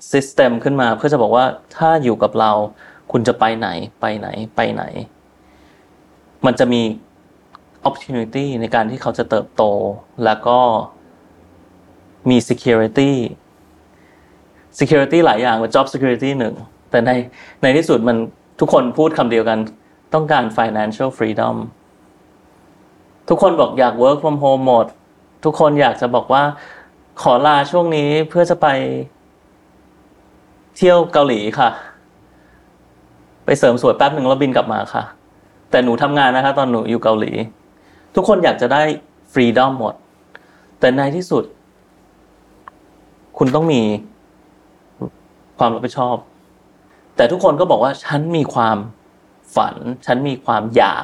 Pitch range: 110-140 Hz